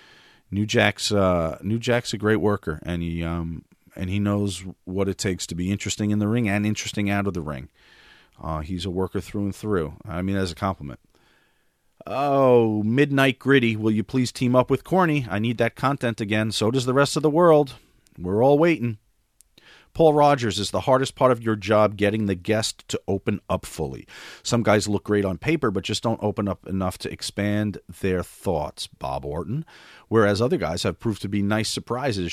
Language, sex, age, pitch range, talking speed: English, male, 40-59, 95-120 Hz, 200 wpm